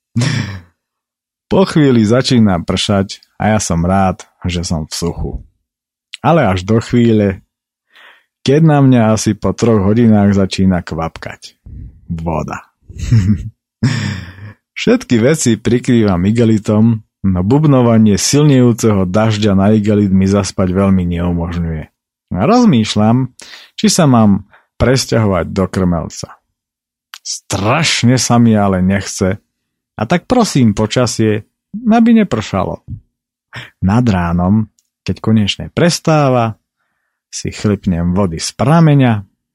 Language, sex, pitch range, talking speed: Slovak, male, 90-120 Hz, 105 wpm